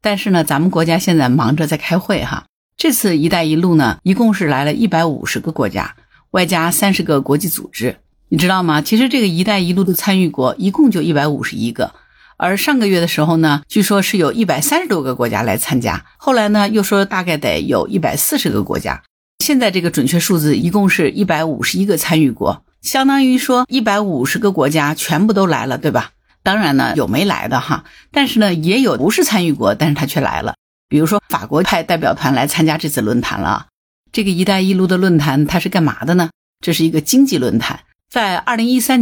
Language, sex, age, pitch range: Chinese, female, 50-69, 150-200 Hz